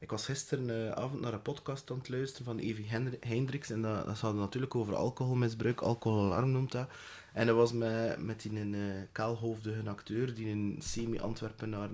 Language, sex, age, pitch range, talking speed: English, male, 20-39, 110-140 Hz, 175 wpm